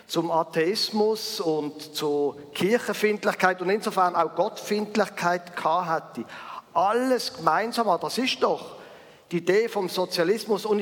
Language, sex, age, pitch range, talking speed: German, male, 50-69, 170-215 Hz, 115 wpm